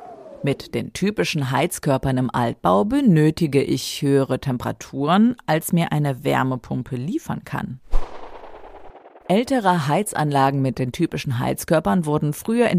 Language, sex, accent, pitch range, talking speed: German, female, German, 130-180 Hz, 115 wpm